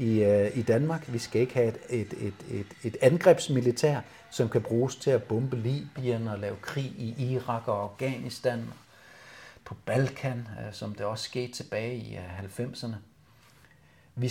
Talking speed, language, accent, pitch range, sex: 140 wpm, Danish, native, 105-125 Hz, male